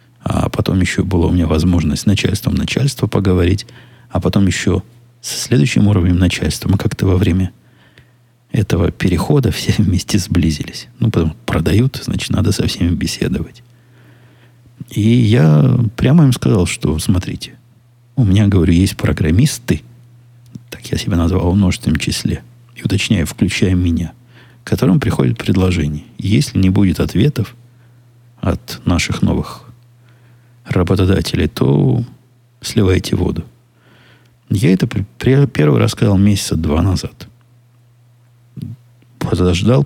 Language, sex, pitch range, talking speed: Russian, male, 90-120 Hz, 125 wpm